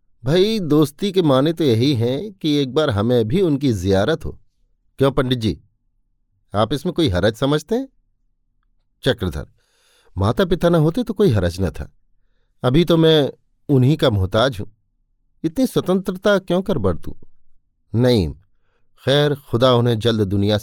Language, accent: Hindi, native